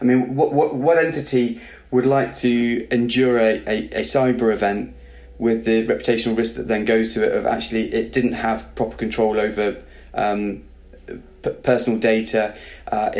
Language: English